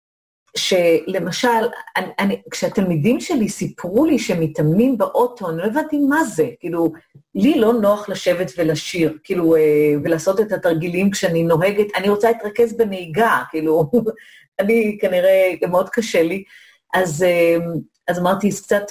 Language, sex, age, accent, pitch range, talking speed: Hebrew, female, 40-59, native, 170-225 Hz, 135 wpm